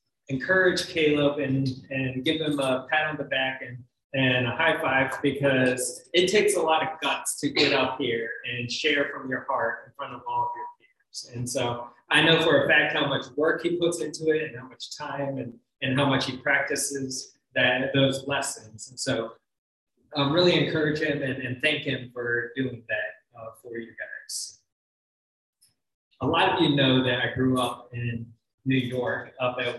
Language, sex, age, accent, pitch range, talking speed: English, male, 20-39, American, 130-155 Hz, 195 wpm